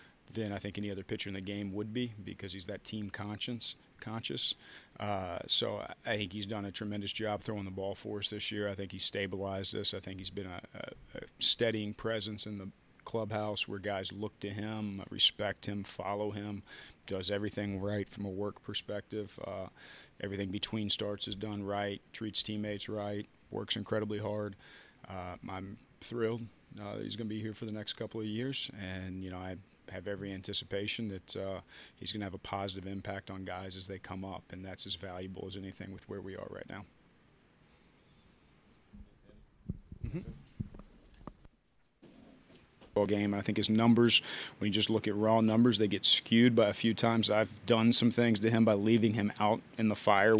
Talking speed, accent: 190 wpm, American